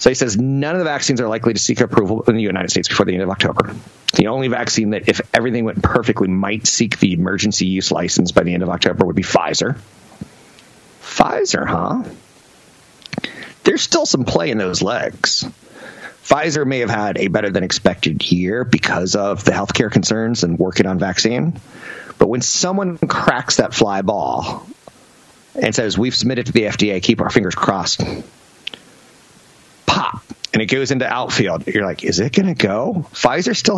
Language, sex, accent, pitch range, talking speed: English, male, American, 90-120 Hz, 185 wpm